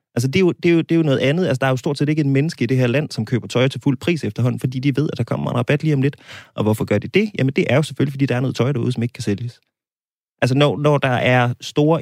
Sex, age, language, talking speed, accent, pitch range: male, 20-39, Danish, 345 wpm, native, 120-150 Hz